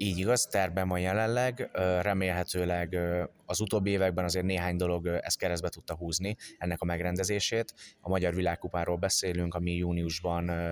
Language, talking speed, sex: Hungarian, 140 wpm, male